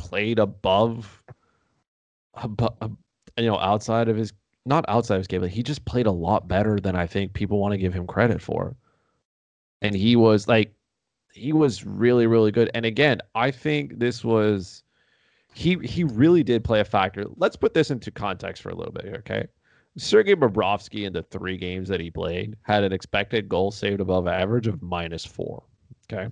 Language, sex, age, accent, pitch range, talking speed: English, male, 20-39, American, 95-115 Hz, 190 wpm